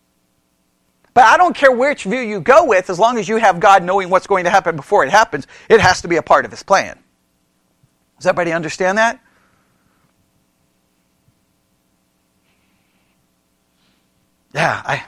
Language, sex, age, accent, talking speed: English, male, 40-59, American, 145 wpm